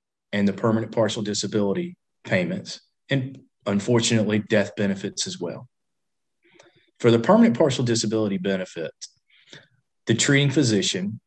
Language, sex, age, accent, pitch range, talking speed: English, male, 40-59, American, 105-135 Hz, 110 wpm